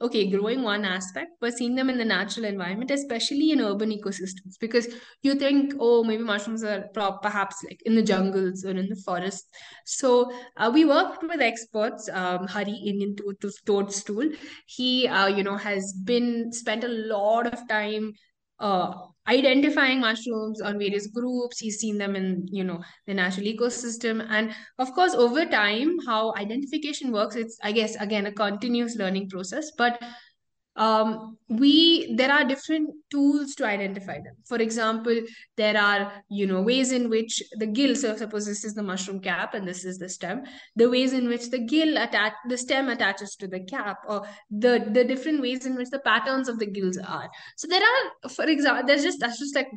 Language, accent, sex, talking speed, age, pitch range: English, Indian, female, 185 wpm, 20-39, 205-260 Hz